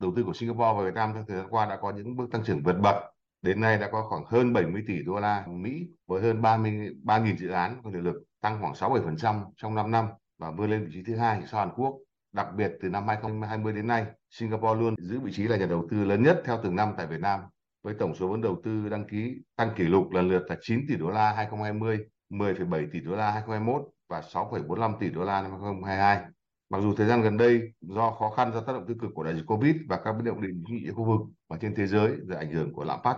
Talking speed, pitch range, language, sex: 260 wpm, 95-115 Hz, Vietnamese, male